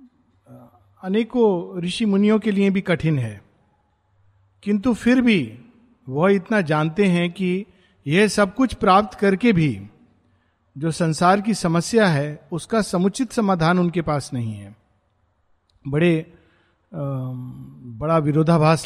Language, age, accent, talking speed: Hindi, 50-69, native, 120 wpm